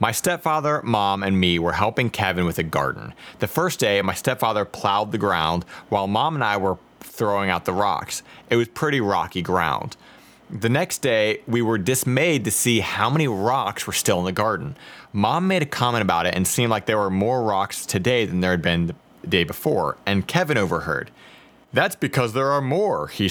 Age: 30-49